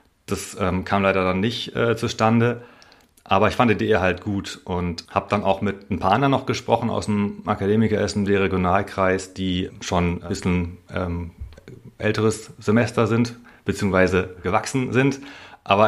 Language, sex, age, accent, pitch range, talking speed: German, male, 40-59, German, 95-110 Hz, 165 wpm